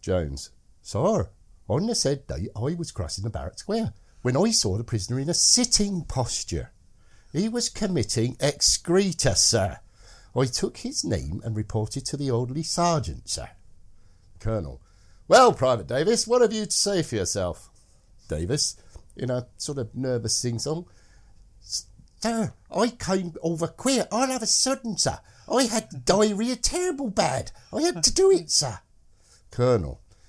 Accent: British